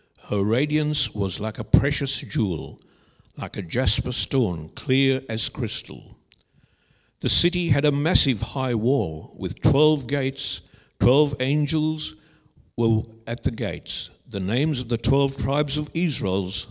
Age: 60-79